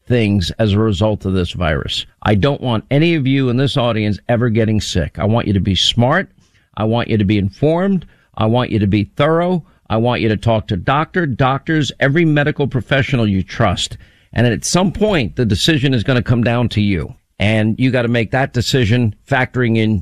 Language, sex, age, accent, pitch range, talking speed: English, male, 50-69, American, 110-145 Hz, 215 wpm